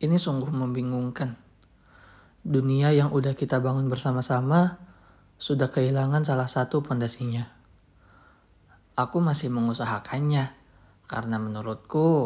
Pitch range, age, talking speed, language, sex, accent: 110-145 Hz, 20-39, 95 wpm, Indonesian, male, native